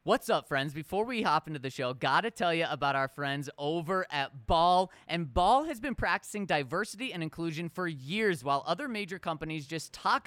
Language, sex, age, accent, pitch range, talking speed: English, male, 20-39, American, 155-205 Hz, 200 wpm